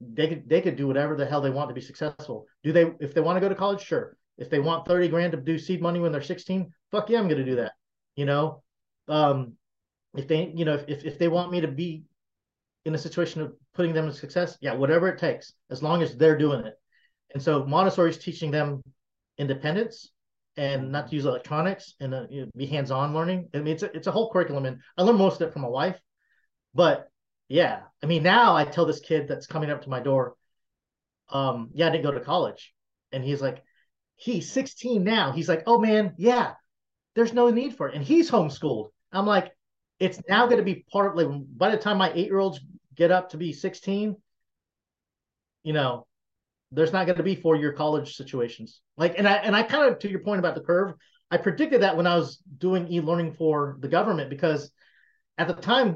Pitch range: 145-190 Hz